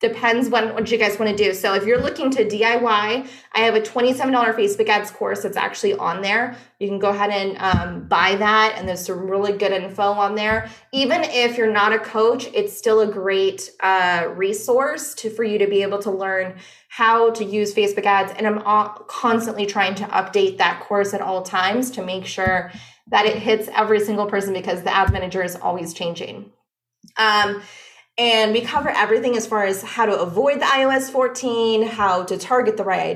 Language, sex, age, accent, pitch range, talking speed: English, female, 20-39, American, 195-240 Hz, 195 wpm